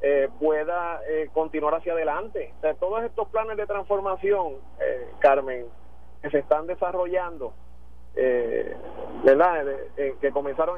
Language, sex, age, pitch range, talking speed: Spanish, male, 30-49, 150-205 Hz, 135 wpm